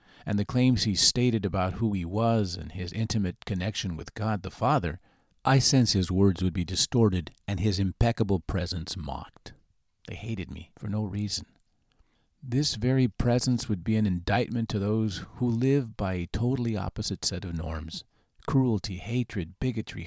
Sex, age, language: male, 50-69, English